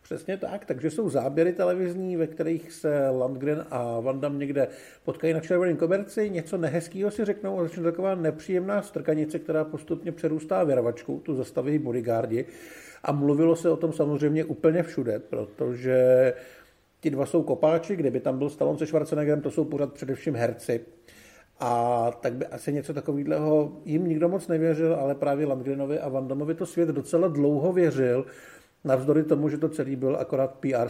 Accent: native